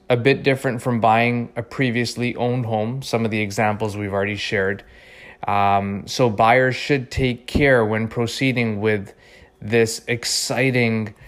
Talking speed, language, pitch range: 145 wpm, English, 105-125 Hz